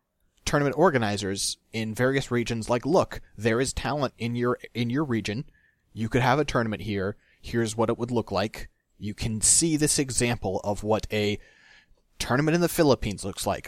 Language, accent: English, American